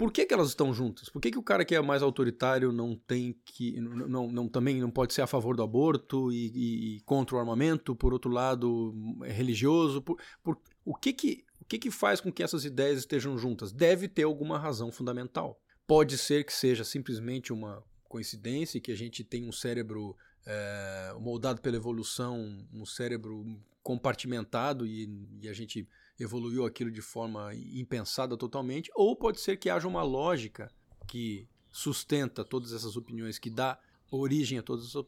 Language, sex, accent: Portuguese, male, Brazilian